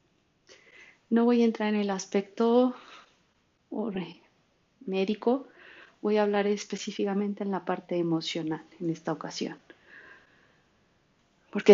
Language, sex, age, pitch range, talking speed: Spanish, female, 30-49, 195-250 Hz, 100 wpm